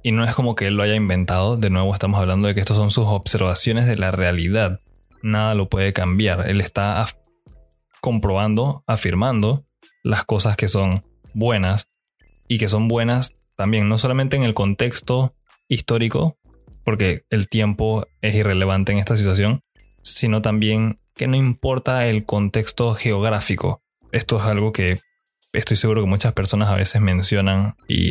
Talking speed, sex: 160 wpm, male